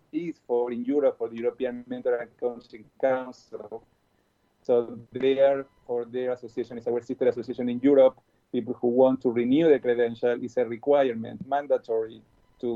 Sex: male